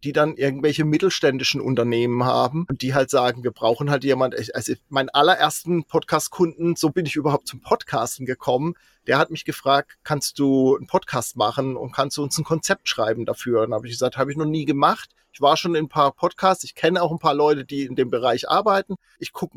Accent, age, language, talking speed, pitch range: German, 40-59, German, 220 wpm, 140-190 Hz